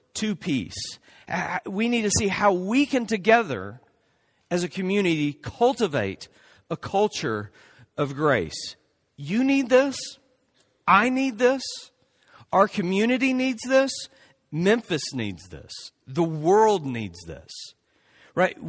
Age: 40-59